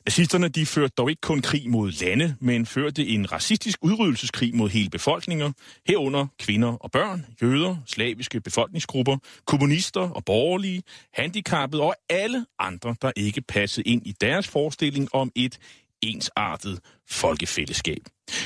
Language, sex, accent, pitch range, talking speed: Danish, male, native, 115-155 Hz, 135 wpm